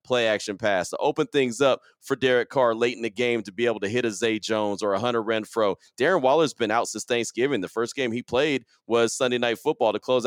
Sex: male